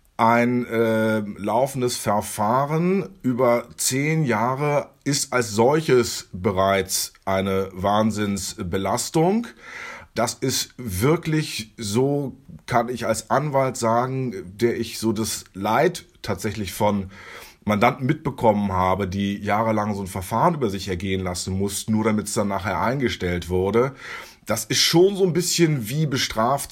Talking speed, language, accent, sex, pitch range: 130 wpm, German, German, male, 100-130 Hz